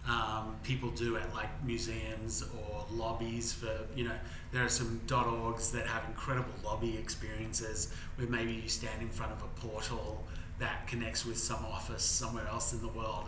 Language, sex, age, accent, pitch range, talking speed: English, male, 30-49, Australian, 110-125 Hz, 175 wpm